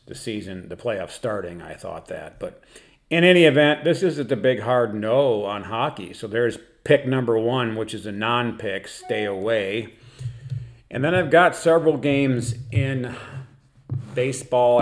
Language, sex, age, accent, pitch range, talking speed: English, male, 40-59, American, 110-130 Hz, 160 wpm